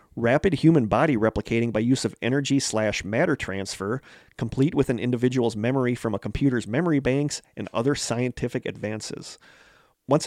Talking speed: 140 wpm